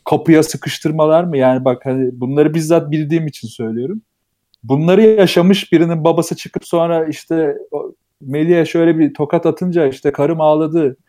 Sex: male